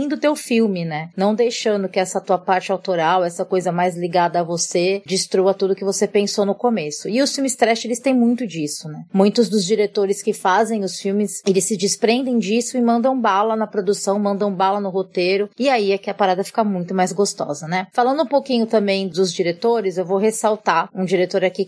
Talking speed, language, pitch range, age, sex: 210 wpm, Portuguese, 180-225 Hz, 20-39, female